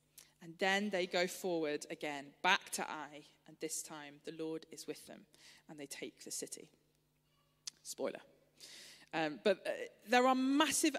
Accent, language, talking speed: British, English, 160 wpm